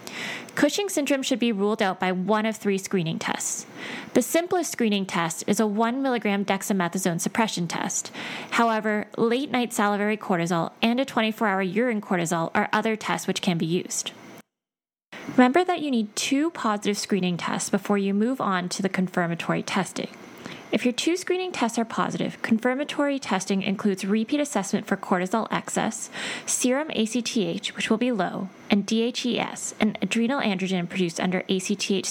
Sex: female